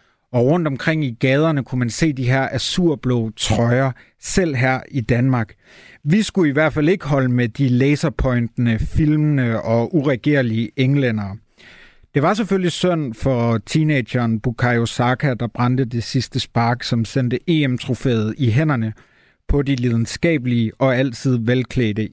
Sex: male